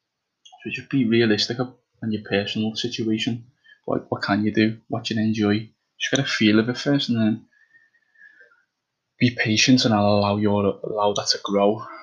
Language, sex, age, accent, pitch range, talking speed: English, male, 10-29, British, 100-110 Hz, 180 wpm